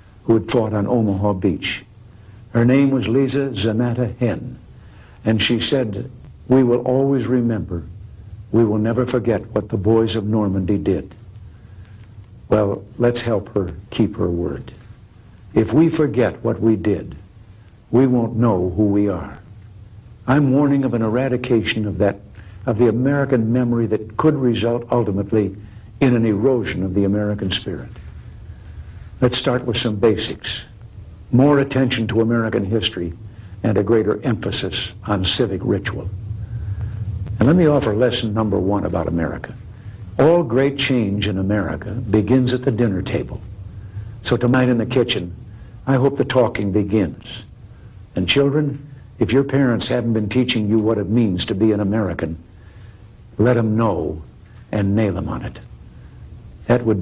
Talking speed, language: 150 wpm, English